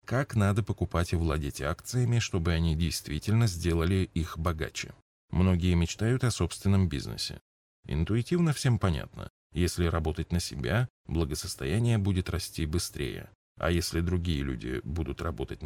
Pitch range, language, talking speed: 85-115 Hz, Russian, 130 wpm